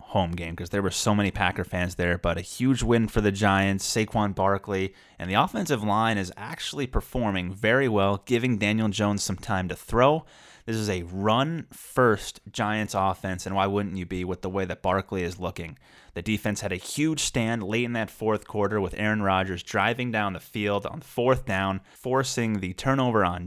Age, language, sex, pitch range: 30-49, English, male, 95-110 Hz